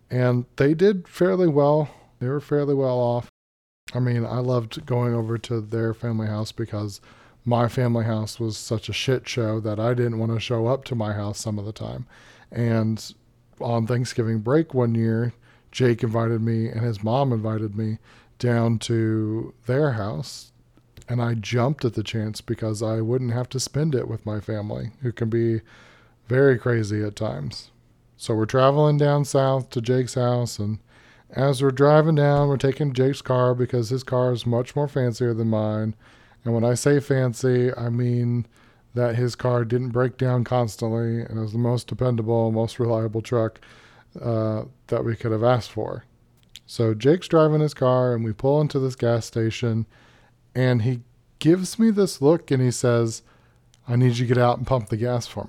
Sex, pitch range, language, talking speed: male, 115-125 Hz, English, 185 wpm